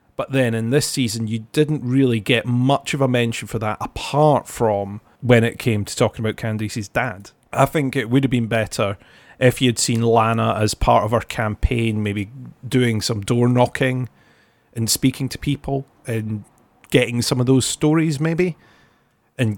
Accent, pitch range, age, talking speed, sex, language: British, 110-130 Hz, 40-59, 180 wpm, male, English